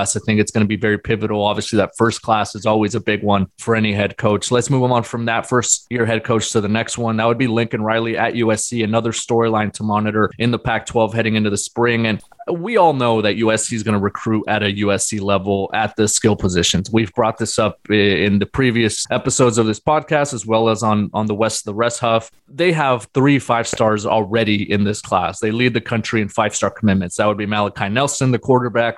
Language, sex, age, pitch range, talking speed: English, male, 20-39, 105-120 Hz, 235 wpm